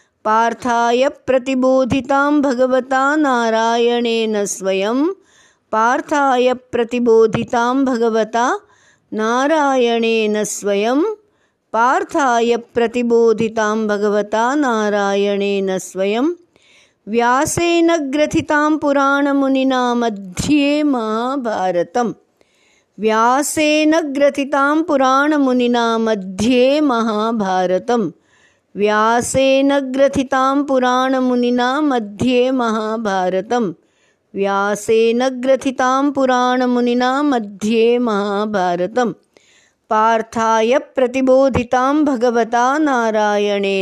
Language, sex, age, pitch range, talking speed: Hindi, female, 50-69, 220-270 Hz, 35 wpm